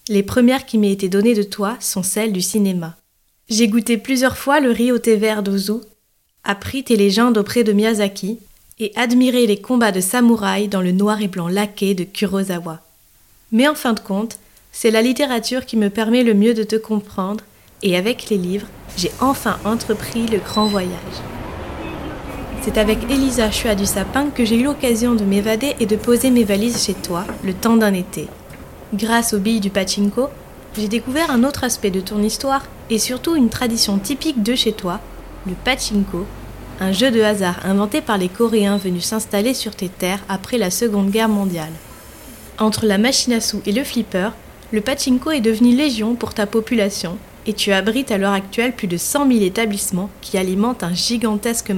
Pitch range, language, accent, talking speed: 195-235 Hz, French, French, 190 wpm